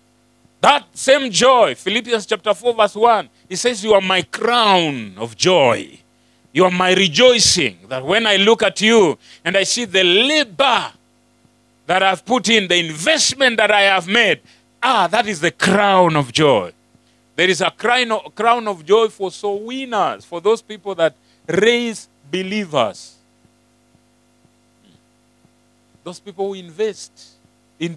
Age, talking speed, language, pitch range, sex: 40-59, 145 wpm, English, 150-210 Hz, male